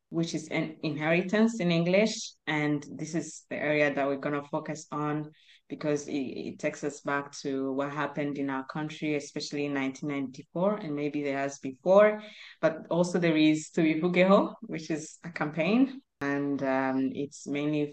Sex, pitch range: female, 140-165 Hz